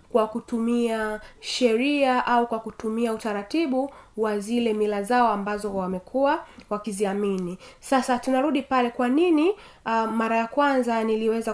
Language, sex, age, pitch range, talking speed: Swahili, female, 20-39, 215-260 Hz, 125 wpm